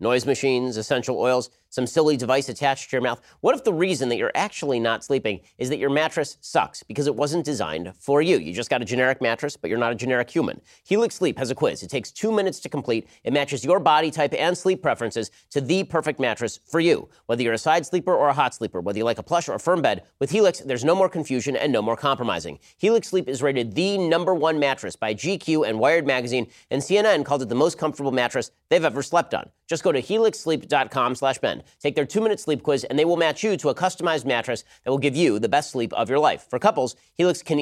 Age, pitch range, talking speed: 30-49, 125-170 Hz, 245 wpm